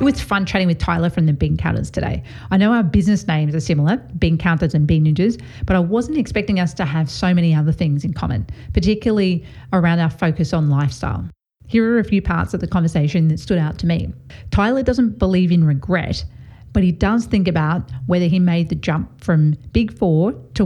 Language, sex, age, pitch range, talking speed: English, female, 30-49, 155-185 Hz, 215 wpm